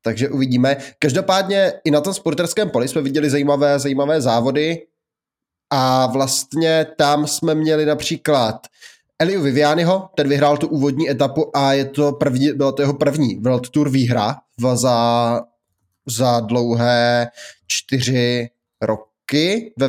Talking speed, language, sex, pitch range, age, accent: 120 wpm, Czech, male, 130-145 Hz, 20-39, native